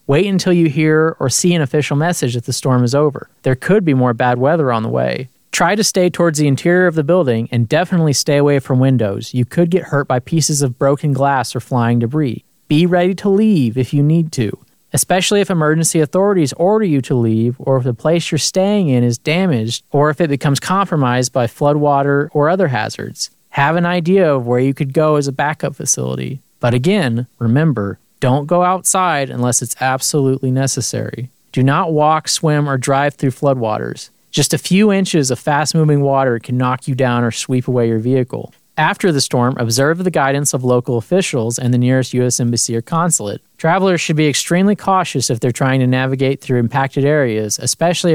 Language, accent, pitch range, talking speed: English, American, 125-160 Hz, 200 wpm